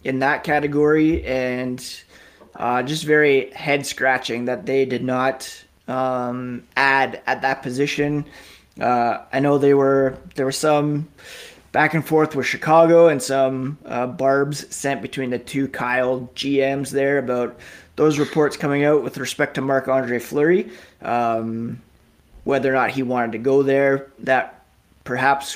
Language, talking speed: English, 145 wpm